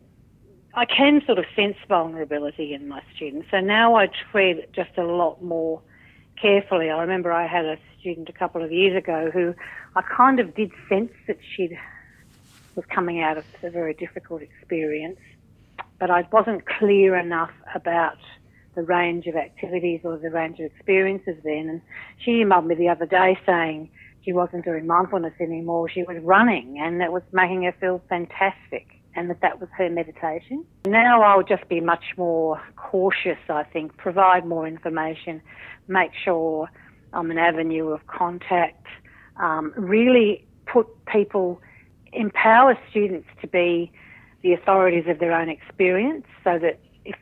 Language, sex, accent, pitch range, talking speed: English, female, Australian, 165-195 Hz, 160 wpm